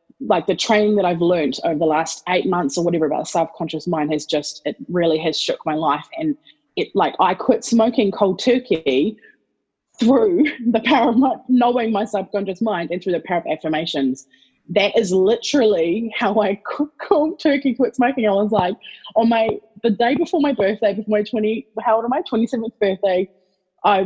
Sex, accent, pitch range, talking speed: female, Australian, 185-255 Hz, 195 wpm